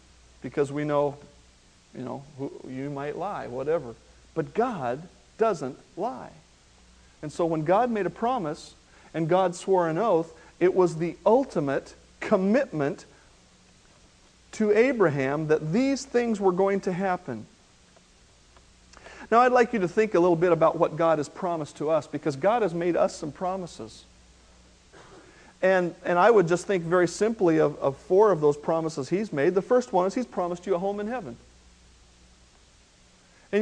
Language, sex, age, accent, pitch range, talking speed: English, male, 50-69, American, 145-230 Hz, 160 wpm